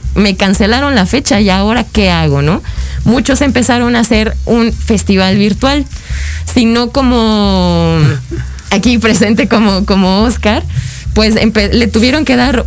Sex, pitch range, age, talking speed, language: female, 180-240 Hz, 20-39, 135 wpm, Spanish